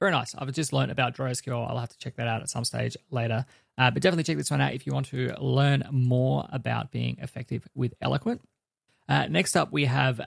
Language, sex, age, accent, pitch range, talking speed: English, male, 20-39, Australian, 120-145 Hz, 235 wpm